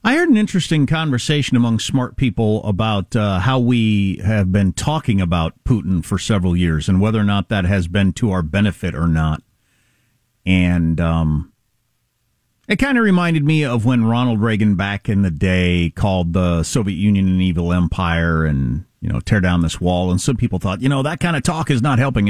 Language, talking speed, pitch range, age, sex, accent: English, 200 wpm, 95-150 Hz, 50-69, male, American